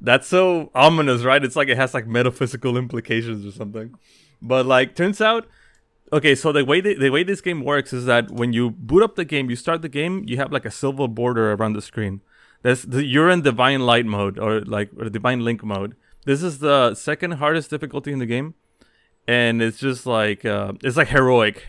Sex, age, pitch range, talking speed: male, 20-39, 115-140 Hz, 215 wpm